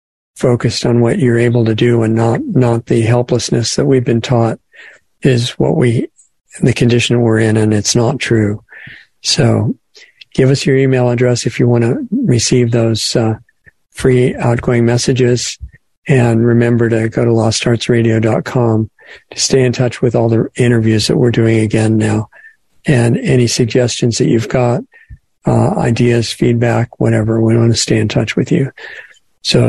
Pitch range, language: 115-125 Hz, English